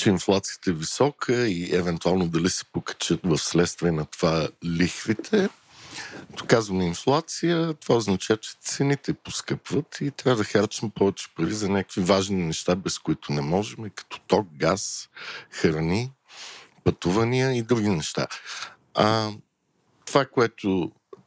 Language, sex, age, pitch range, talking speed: Bulgarian, male, 50-69, 90-130 Hz, 130 wpm